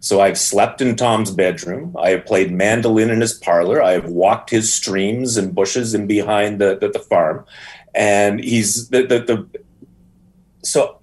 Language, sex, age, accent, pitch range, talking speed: English, male, 30-49, American, 105-125 Hz, 175 wpm